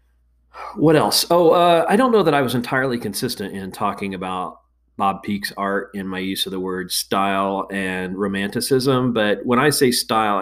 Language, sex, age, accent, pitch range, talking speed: English, male, 40-59, American, 90-105 Hz, 185 wpm